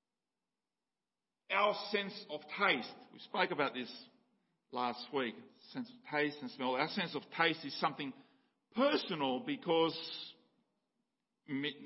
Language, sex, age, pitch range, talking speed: English, male, 50-69, 165-245 Hz, 115 wpm